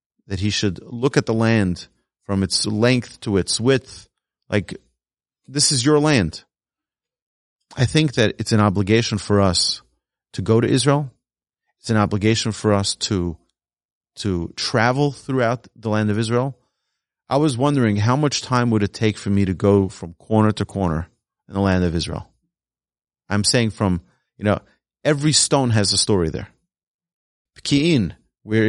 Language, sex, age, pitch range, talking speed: English, male, 30-49, 95-115 Hz, 160 wpm